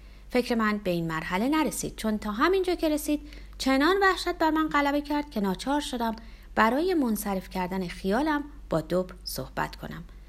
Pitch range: 190-290 Hz